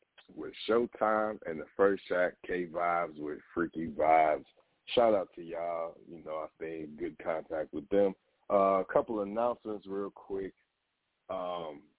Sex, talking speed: male, 155 wpm